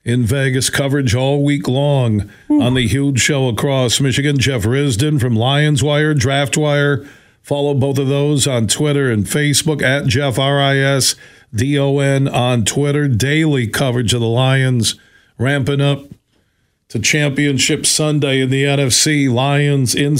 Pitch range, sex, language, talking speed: 125-145 Hz, male, English, 155 wpm